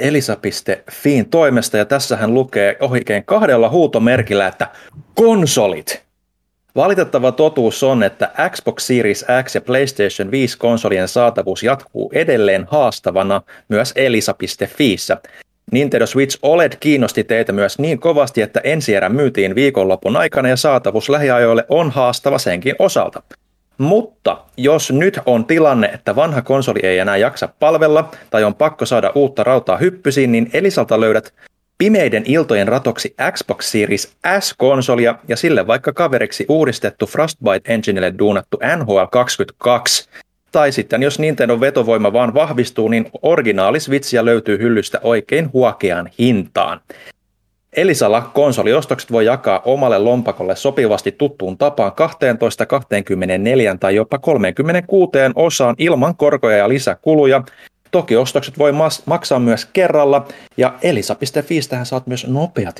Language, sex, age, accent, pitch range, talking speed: Finnish, male, 30-49, native, 115-145 Hz, 125 wpm